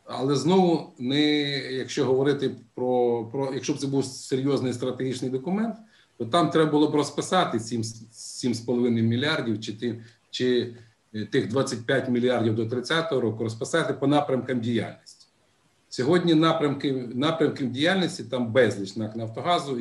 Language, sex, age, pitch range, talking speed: Ukrainian, male, 50-69, 115-145 Hz, 135 wpm